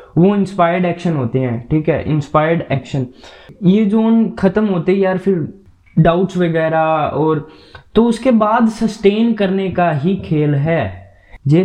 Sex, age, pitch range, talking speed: male, 20-39, 140-170 Hz, 150 wpm